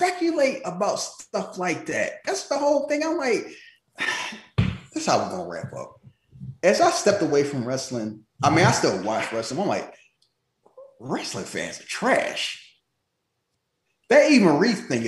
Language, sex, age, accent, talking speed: English, male, 30-49, American, 155 wpm